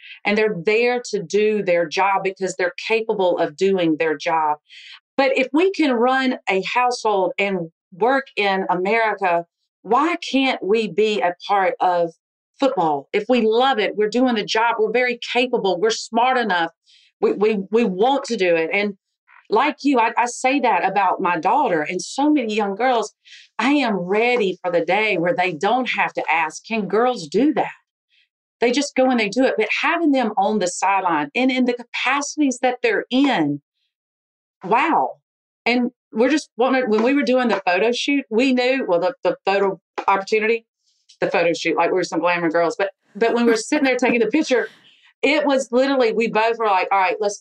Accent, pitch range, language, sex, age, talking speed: American, 185-255 Hz, English, female, 40-59, 190 wpm